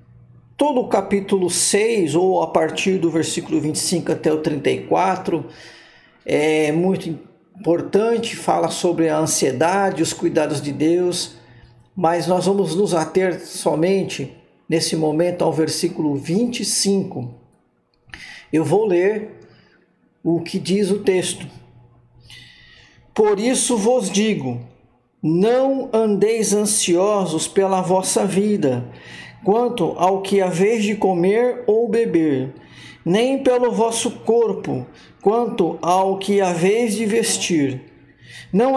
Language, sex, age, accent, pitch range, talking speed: Portuguese, male, 50-69, Brazilian, 150-200 Hz, 115 wpm